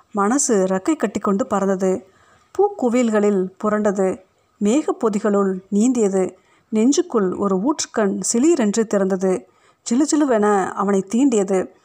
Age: 50-69